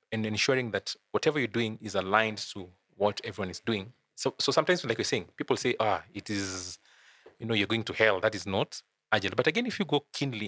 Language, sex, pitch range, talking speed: English, male, 95-115 Hz, 230 wpm